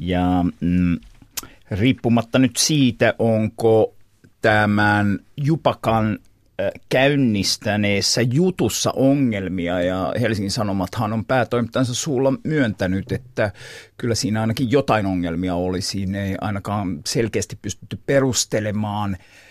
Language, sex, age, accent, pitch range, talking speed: Finnish, male, 50-69, native, 105-140 Hz, 90 wpm